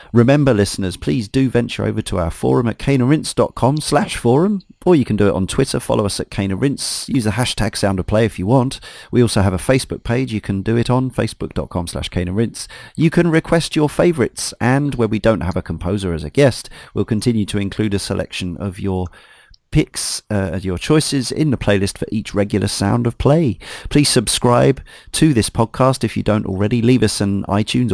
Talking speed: 205 wpm